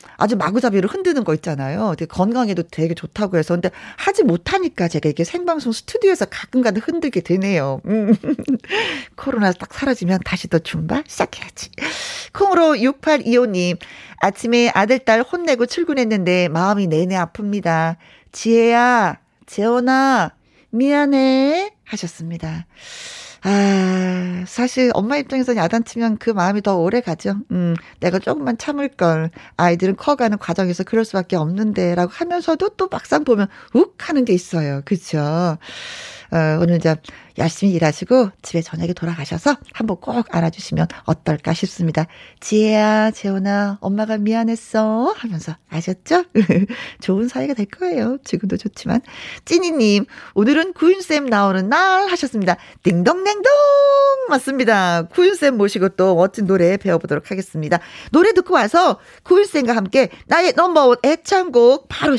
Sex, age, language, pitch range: female, 40-59, Korean, 180-275 Hz